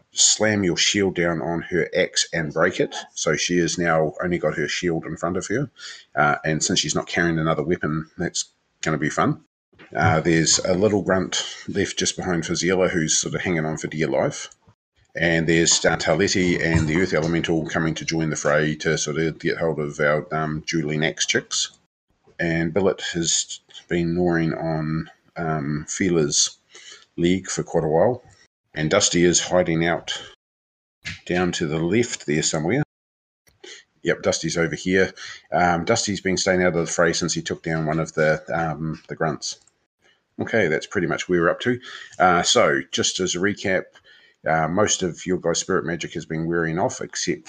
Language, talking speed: English, 185 wpm